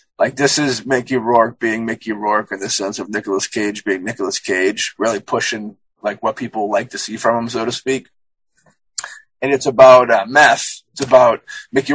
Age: 20-39